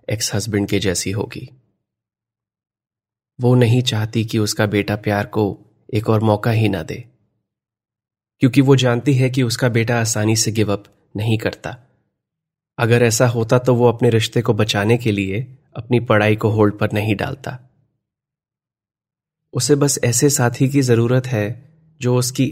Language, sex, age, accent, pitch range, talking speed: Hindi, male, 30-49, native, 110-130 Hz, 155 wpm